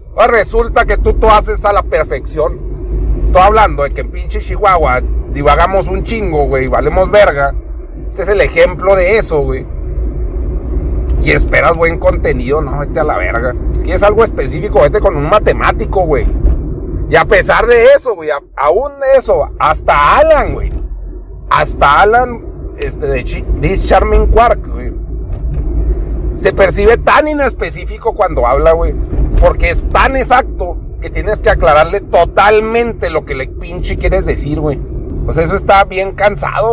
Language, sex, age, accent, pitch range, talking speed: Spanish, male, 40-59, Mexican, 145-225 Hz, 165 wpm